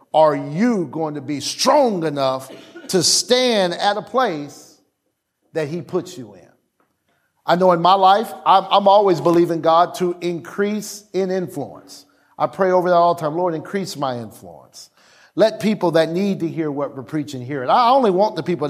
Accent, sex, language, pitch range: American, male, English, 150-195 Hz